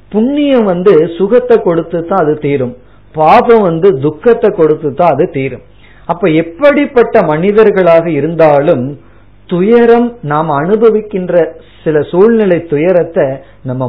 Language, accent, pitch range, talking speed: Tamil, native, 140-200 Hz, 105 wpm